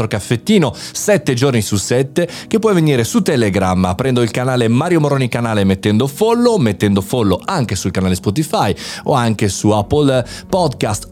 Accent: native